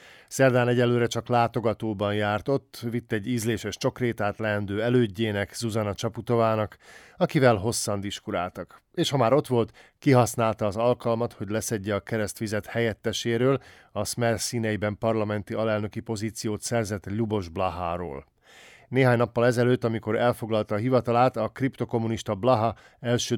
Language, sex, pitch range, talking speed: Hungarian, male, 105-125 Hz, 130 wpm